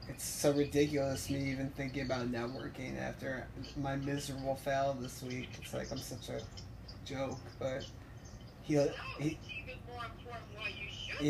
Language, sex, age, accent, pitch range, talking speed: English, male, 20-39, American, 130-150 Hz, 155 wpm